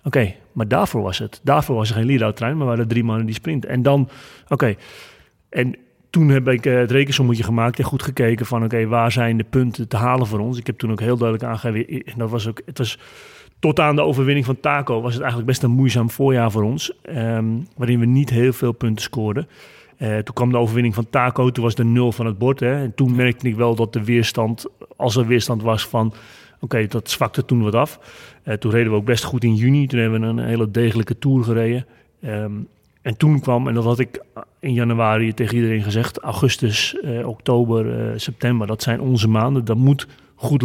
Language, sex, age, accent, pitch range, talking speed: Dutch, male, 30-49, Dutch, 110-130 Hz, 225 wpm